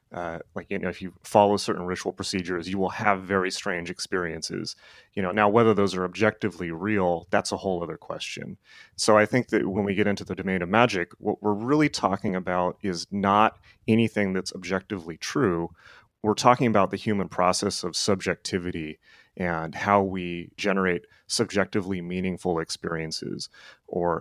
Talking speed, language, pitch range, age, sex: 165 wpm, English, 90-100 Hz, 30-49, male